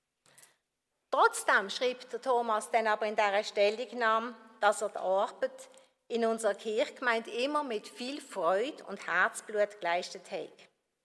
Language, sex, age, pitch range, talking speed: German, female, 50-69, 210-270 Hz, 130 wpm